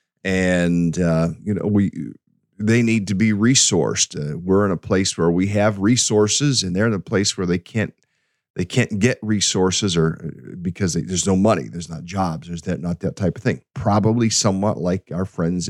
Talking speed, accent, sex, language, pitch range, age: 200 wpm, American, male, English, 85-100 Hz, 40-59